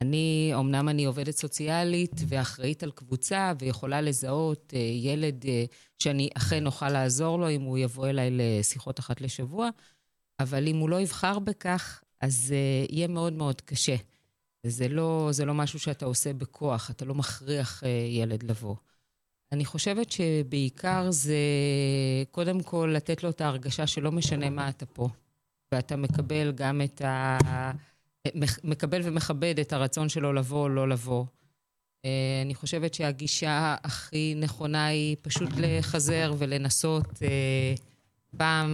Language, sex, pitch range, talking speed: Hebrew, female, 130-155 Hz, 135 wpm